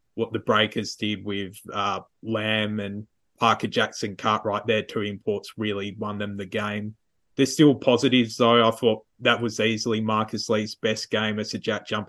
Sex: male